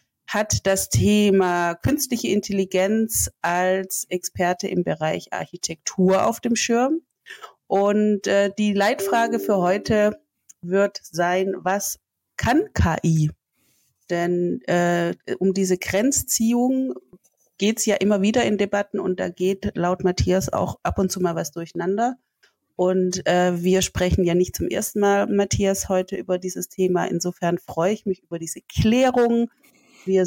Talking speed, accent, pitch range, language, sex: 140 wpm, German, 175-210 Hz, German, female